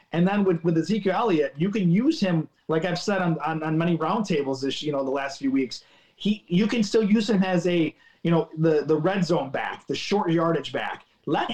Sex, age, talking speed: male, 30-49, 235 wpm